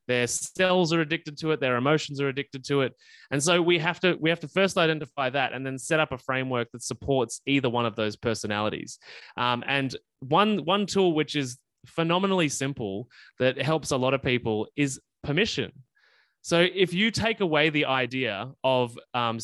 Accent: Australian